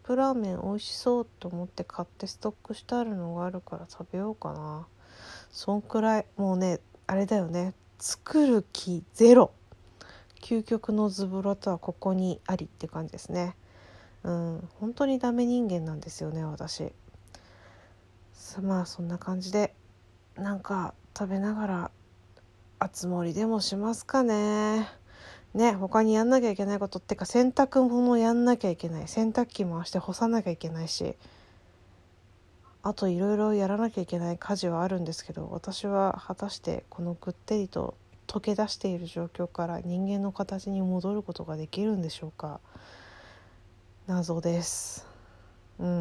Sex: female